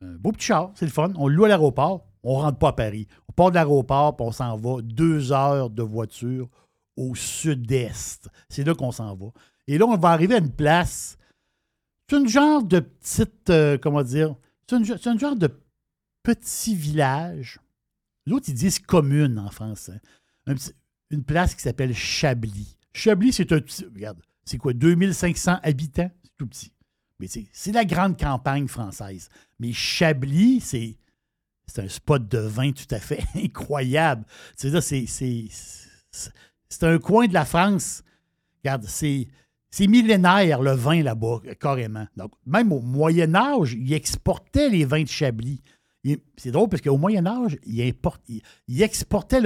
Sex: male